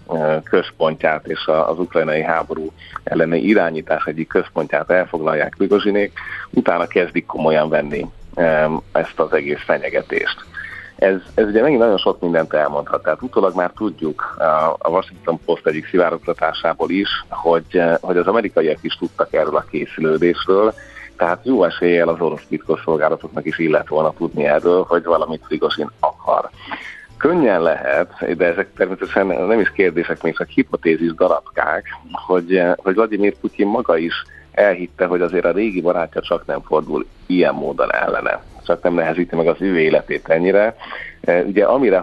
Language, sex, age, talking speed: Hungarian, male, 30-49, 145 wpm